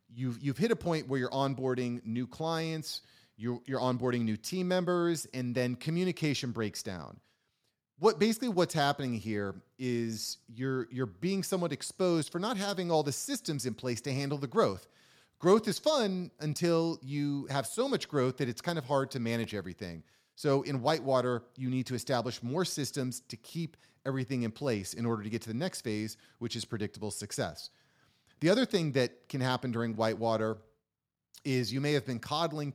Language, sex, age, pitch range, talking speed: English, male, 30-49, 115-155 Hz, 185 wpm